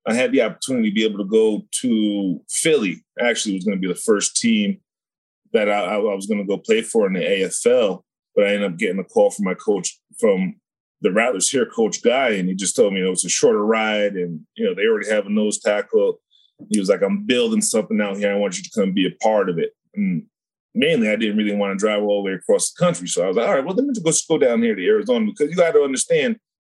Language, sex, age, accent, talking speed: English, male, 30-49, American, 270 wpm